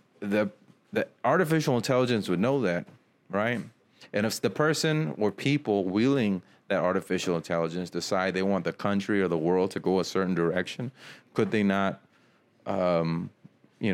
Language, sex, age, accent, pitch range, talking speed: English, male, 30-49, American, 90-110 Hz, 155 wpm